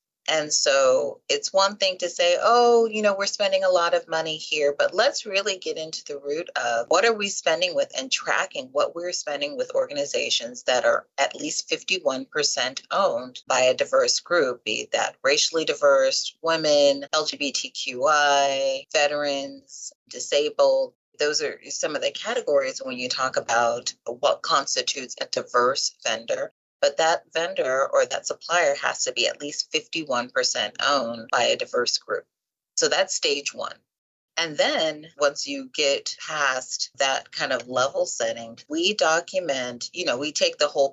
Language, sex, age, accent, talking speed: English, female, 30-49, American, 160 wpm